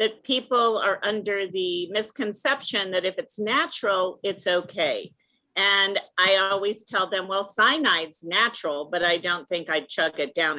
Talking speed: 160 wpm